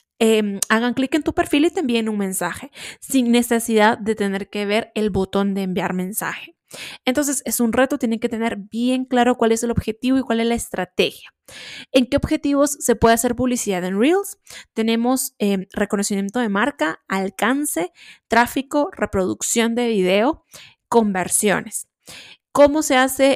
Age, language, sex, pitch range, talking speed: 20-39, Spanish, female, 210-270 Hz, 160 wpm